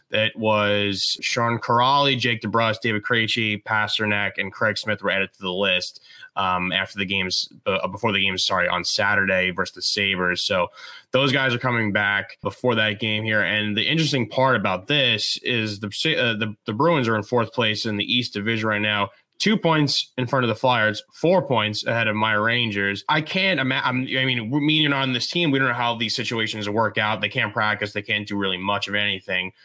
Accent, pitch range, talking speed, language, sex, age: American, 105-130 Hz, 210 wpm, English, male, 20-39